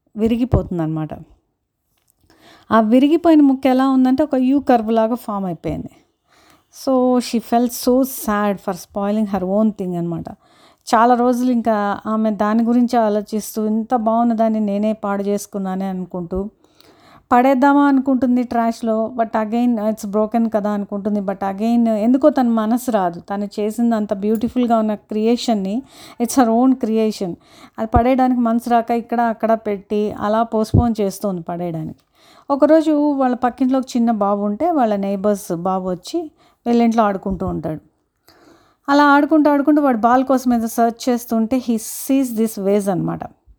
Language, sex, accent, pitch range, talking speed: Telugu, female, native, 215-265 Hz, 140 wpm